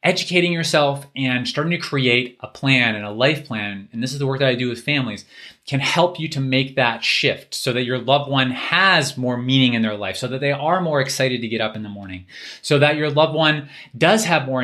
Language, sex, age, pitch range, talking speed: English, male, 20-39, 115-145 Hz, 245 wpm